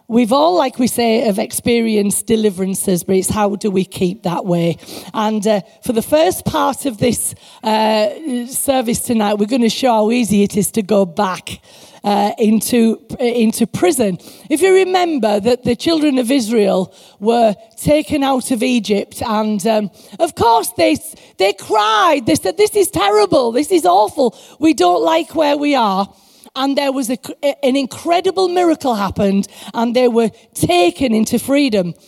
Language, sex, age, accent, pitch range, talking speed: English, female, 40-59, British, 220-315 Hz, 170 wpm